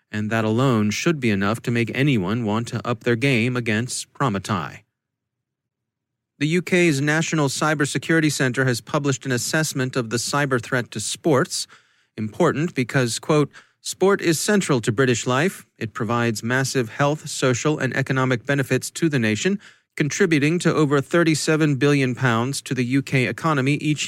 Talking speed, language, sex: 155 wpm, English, male